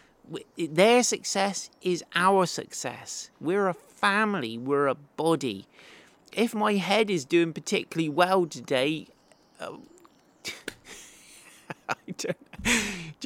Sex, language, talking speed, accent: male, English, 95 wpm, British